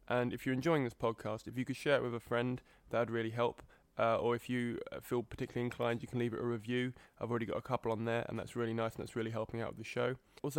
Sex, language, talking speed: male, English, 290 wpm